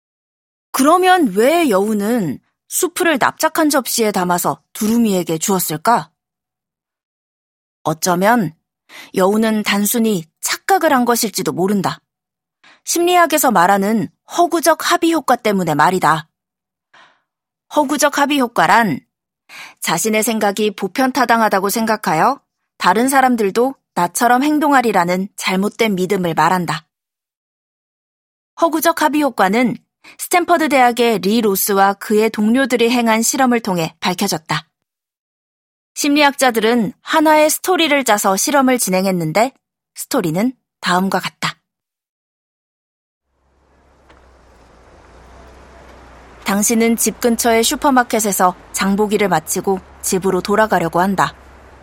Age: 30-49